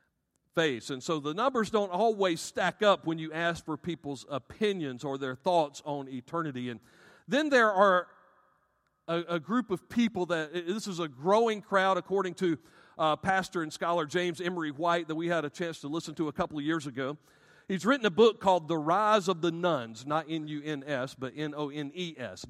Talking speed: 190 wpm